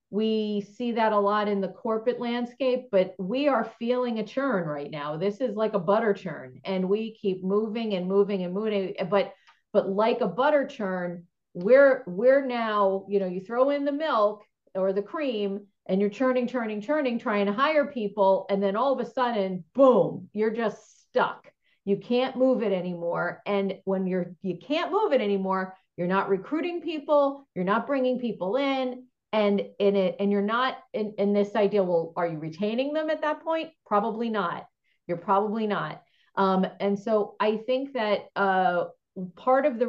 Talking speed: 185 wpm